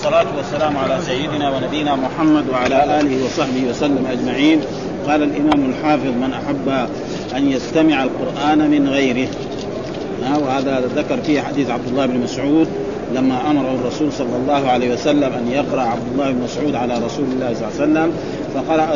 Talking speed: 160 wpm